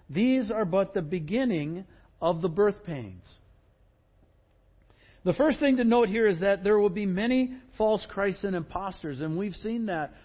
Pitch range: 130-205 Hz